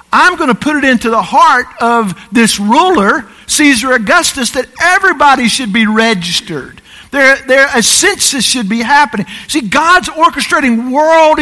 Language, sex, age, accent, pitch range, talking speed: English, male, 50-69, American, 235-305 Hz, 150 wpm